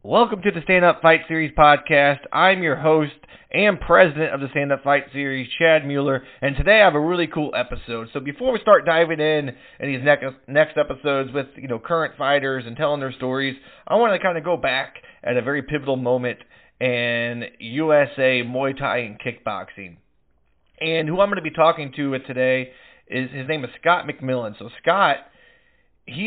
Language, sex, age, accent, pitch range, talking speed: English, male, 30-49, American, 125-155 Hz, 195 wpm